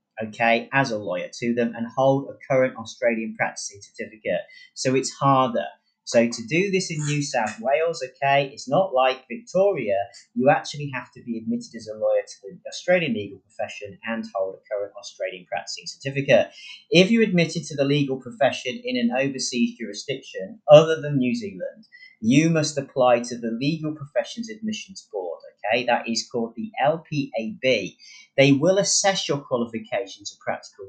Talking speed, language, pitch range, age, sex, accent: 165 wpm, English, 120-205 Hz, 30-49, male, British